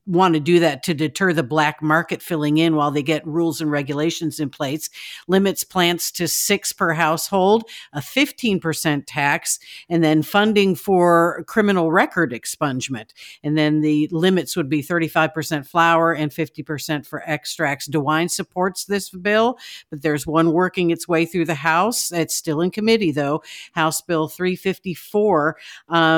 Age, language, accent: 50-69, English, American